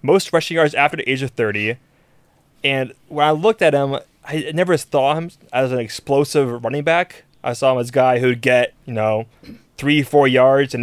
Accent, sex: American, male